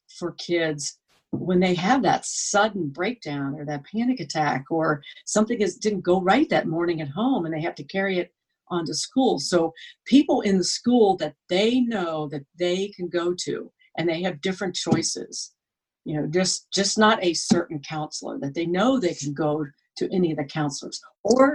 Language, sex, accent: English, female, American